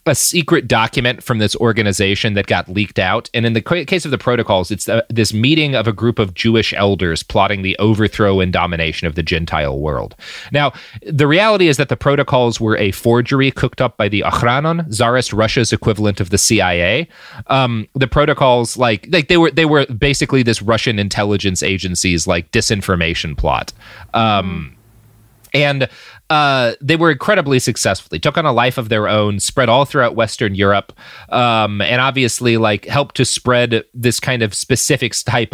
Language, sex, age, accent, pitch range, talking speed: English, male, 30-49, American, 100-130 Hz, 180 wpm